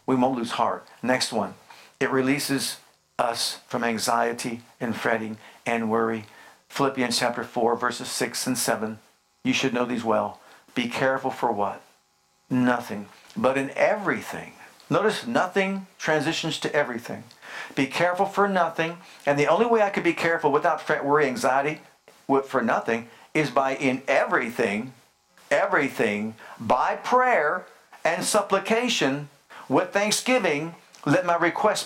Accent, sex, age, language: American, male, 50-69, English